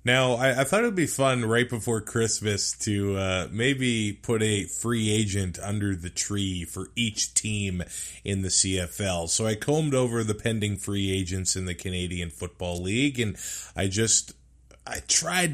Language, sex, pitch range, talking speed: English, male, 90-125 Hz, 175 wpm